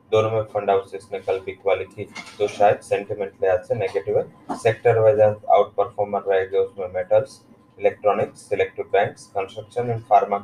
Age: 20-39